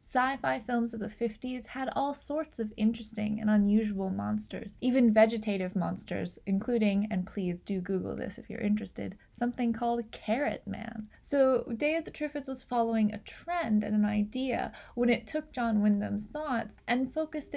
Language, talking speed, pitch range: English, 165 wpm, 210-240 Hz